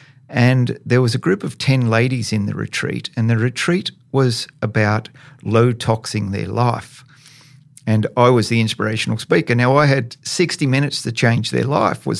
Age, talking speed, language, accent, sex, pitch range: 50-69, 170 wpm, English, Australian, male, 115-145 Hz